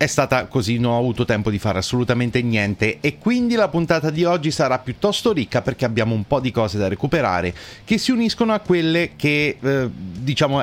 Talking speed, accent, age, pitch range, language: 205 wpm, native, 30-49, 110-155 Hz, Italian